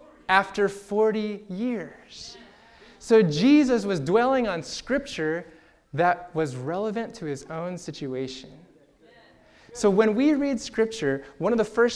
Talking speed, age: 125 wpm, 20-39